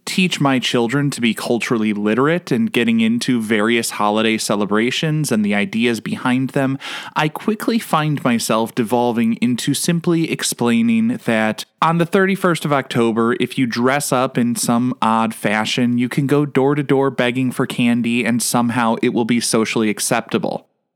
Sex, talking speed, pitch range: male, 160 wpm, 120-180 Hz